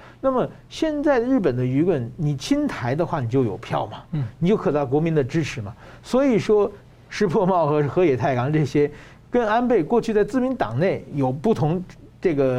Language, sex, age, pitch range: Chinese, male, 50-69, 135-195 Hz